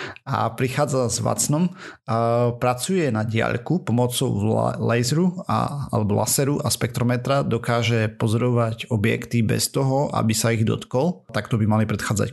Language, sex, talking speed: Slovak, male, 120 wpm